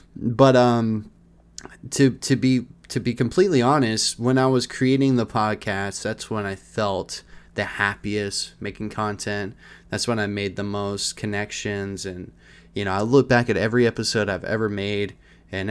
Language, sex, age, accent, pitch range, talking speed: English, male, 20-39, American, 100-130 Hz, 165 wpm